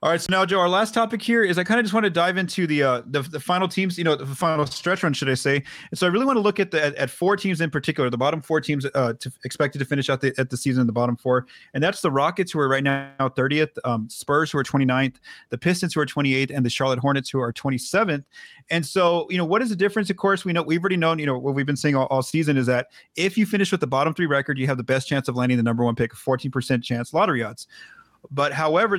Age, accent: 30-49, American